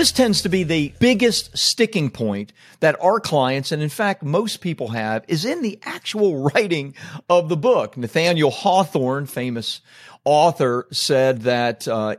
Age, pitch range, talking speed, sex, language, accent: 40-59, 125-165 Hz, 160 wpm, male, English, American